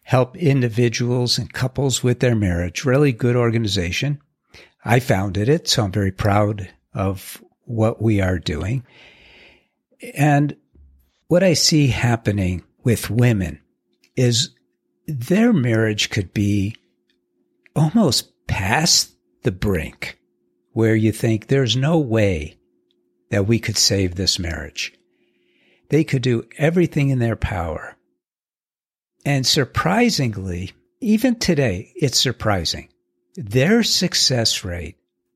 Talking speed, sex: 110 wpm, male